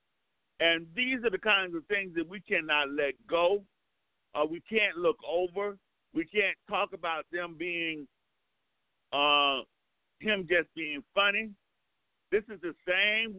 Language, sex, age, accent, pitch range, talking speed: English, male, 50-69, American, 165-230 Hz, 145 wpm